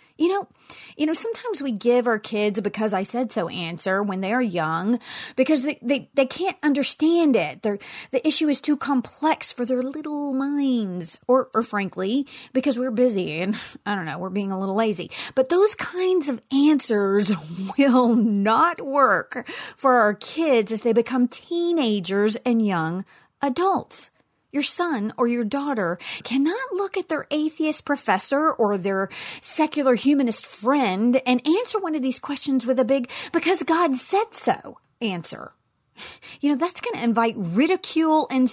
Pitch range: 215-315 Hz